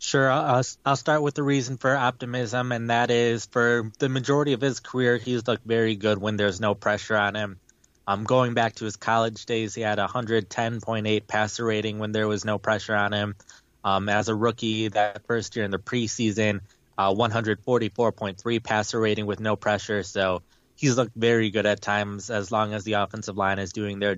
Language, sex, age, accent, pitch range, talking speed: English, male, 20-39, American, 100-115 Hz, 200 wpm